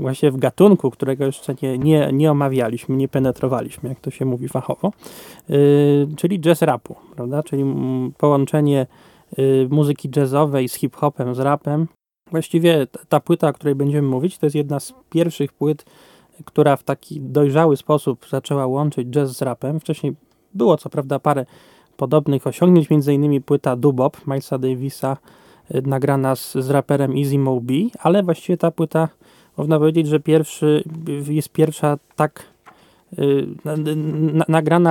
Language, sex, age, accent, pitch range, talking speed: Polish, male, 20-39, native, 135-155 Hz, 150 wpm